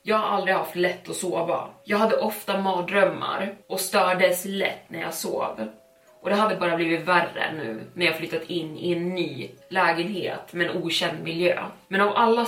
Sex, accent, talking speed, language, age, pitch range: female, native, 190 wpm, Swedish, 20-39, 170-200 Hz